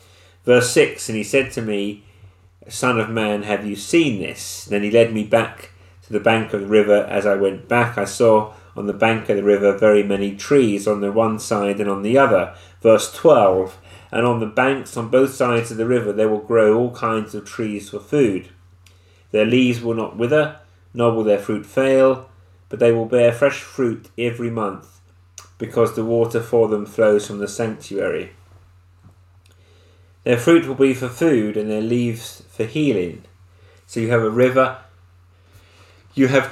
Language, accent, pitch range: English, British, 95-120 Hz